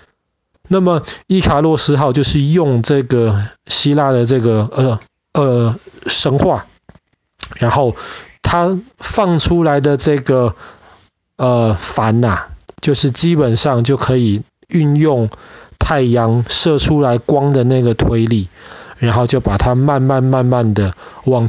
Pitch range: 120-170 Hz